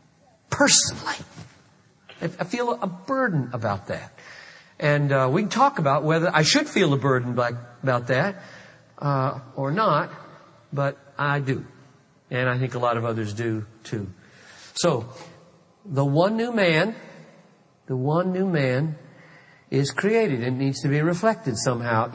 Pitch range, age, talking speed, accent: 135-185 Hz, 50-69, 145 wpm, American